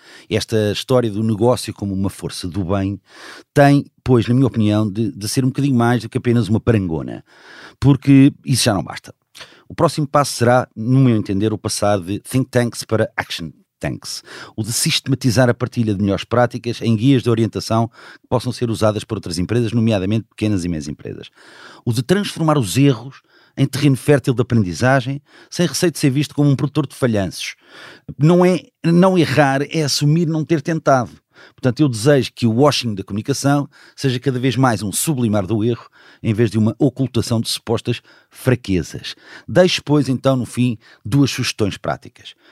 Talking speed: 185 wpm